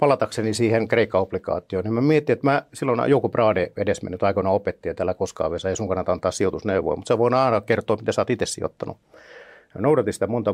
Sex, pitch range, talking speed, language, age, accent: male, 100-145 Hz, 210 wpm, Finnish, 50-69, native